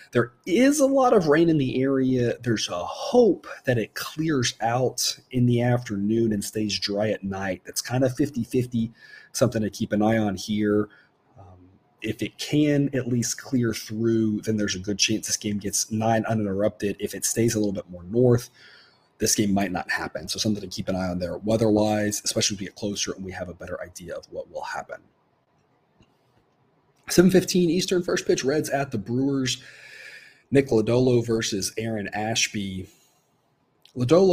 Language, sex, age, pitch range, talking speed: English, male, 30-49, 105-140 Hz, 185 wpm